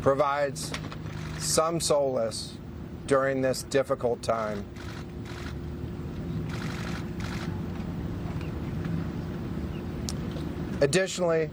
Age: 40-59